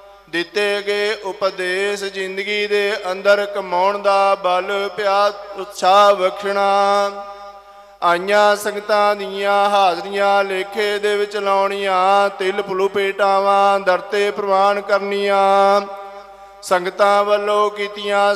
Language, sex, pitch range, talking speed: Punjabi, male, 195-205 Hz, 90 wpm